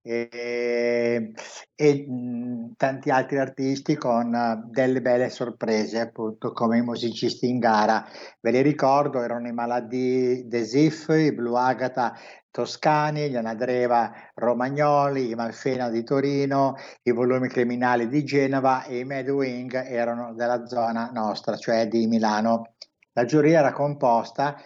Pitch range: 120-140 Hz